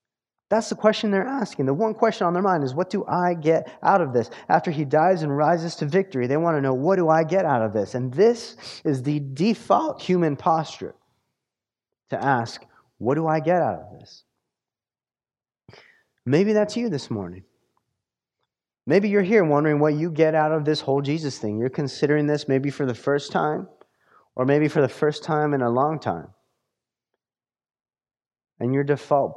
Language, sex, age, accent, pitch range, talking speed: English, male, 30-49, American, 125-170 Hz, 190 wpm